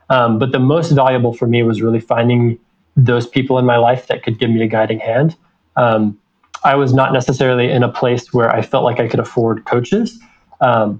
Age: 20-39